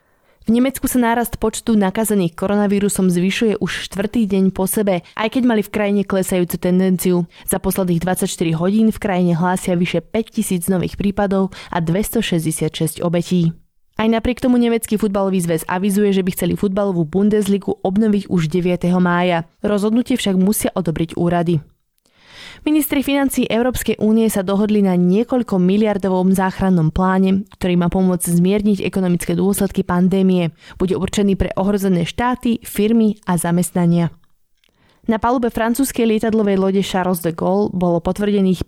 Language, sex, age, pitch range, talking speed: Slovak, female, 20-39, 175-210 Hz, 140 wpm